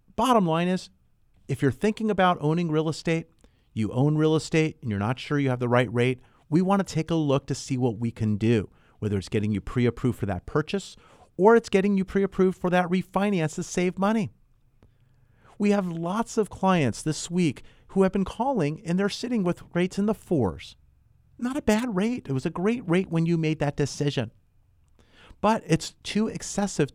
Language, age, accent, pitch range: English, 40-59, American, 125-190 Hz